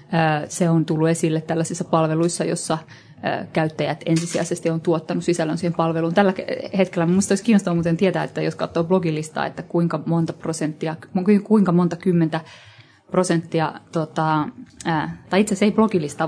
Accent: native